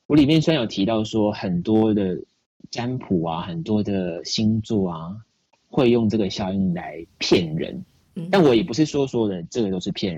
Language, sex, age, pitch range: Chinese, male, 30-49, 100-145 Hz